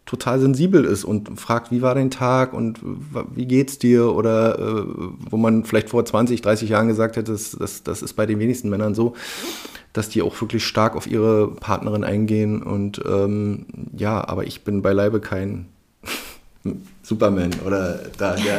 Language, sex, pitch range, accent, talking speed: German, male, 100-115 Hz, German, 175 wpm